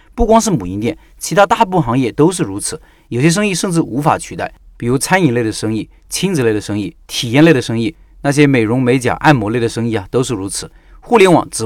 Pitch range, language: 115-165 Hz, Chinese